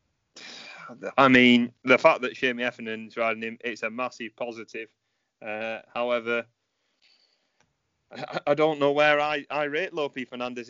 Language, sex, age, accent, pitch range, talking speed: English, male, 30-49, British, 115-130 Hz, 145 wpm